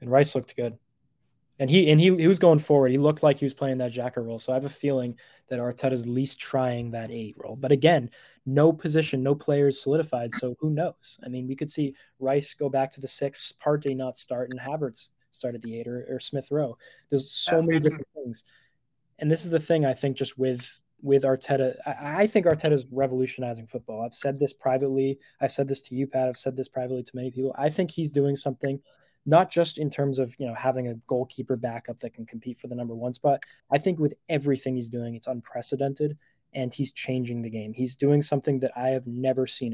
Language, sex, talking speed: English, male, 230 wpm